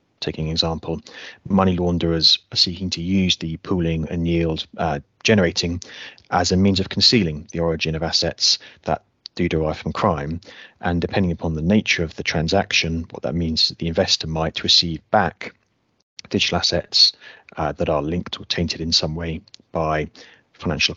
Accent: British